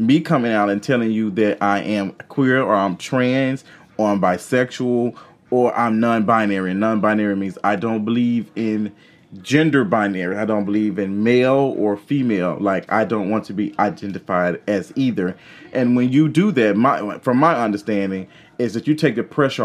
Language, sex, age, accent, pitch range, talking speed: English, male, 30-49, American, 100-120 Hz, 175 wpm